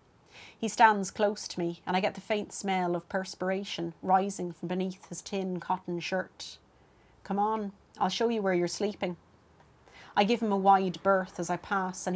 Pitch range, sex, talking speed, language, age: 180-200 Hz, female, 190 wpm, English, 30-49